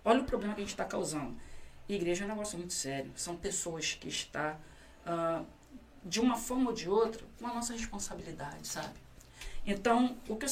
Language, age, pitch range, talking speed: Portuguese, 20-39, 165-220 Hz, 195 wpm